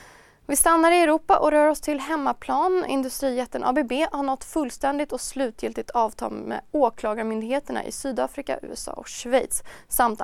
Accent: native